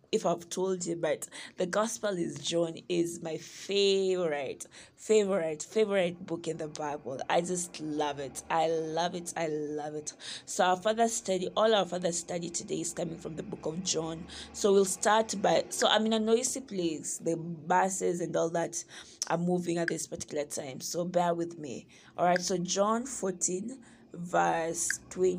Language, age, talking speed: English, 20-39, 175 wpm